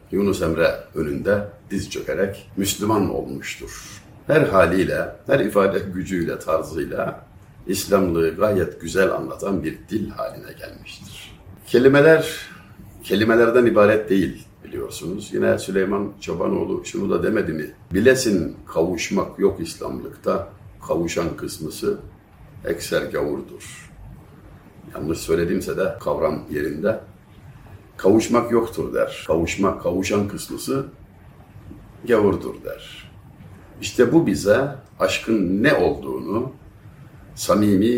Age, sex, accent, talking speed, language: 60-79, male, native, 95 wpm, Turkish